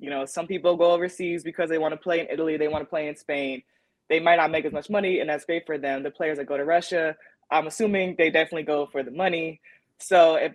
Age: 20-39